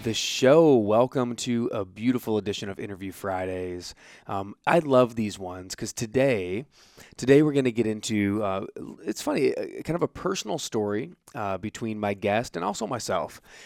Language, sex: English, male